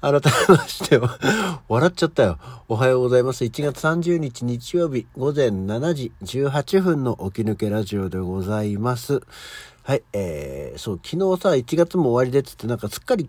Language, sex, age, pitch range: Japanese, male, 60-79, 95-140 Hz